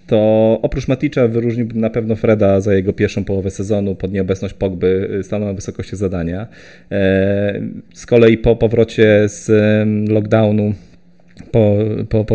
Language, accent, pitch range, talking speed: Polish, native, 95-120 Hz, 135 wpm